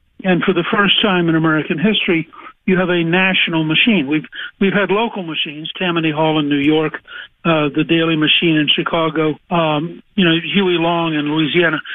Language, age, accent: English, 60-79, American